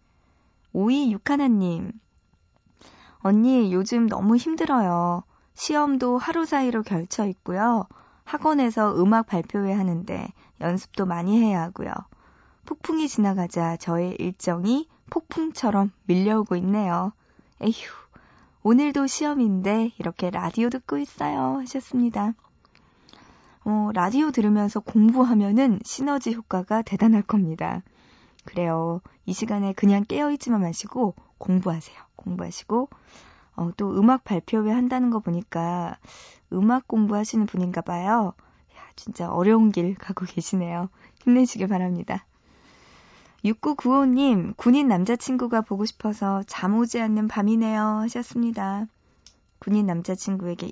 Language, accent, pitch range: Korean, native, 185-240 Hz